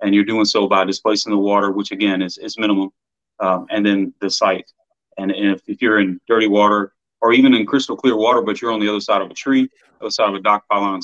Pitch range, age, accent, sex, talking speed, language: 100-115 Hz, 30-49, American, male, 250 wpm, English